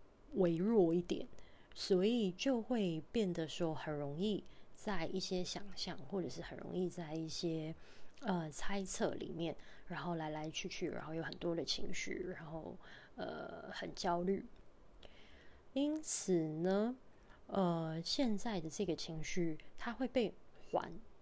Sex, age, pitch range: female, 20-39, 170-220 Hz